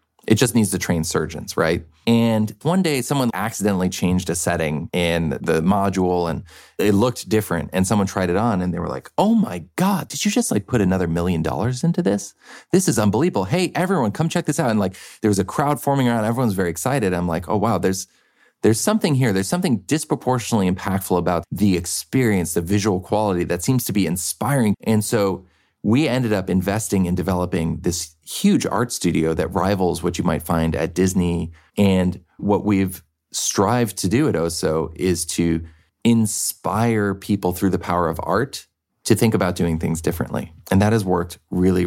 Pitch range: 85-110 Hz